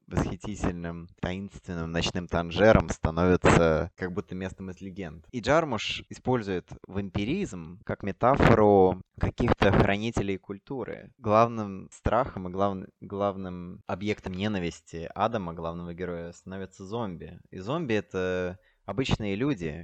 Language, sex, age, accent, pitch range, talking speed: Russian, male, 20-39, native, 90-115 Hz, 110 wpm